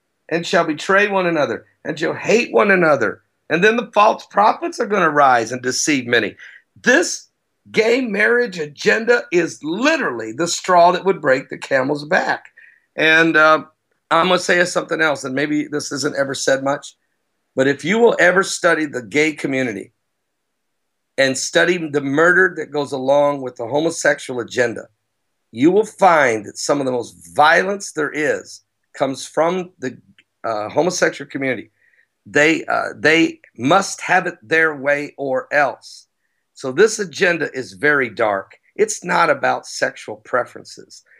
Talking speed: 160 wpm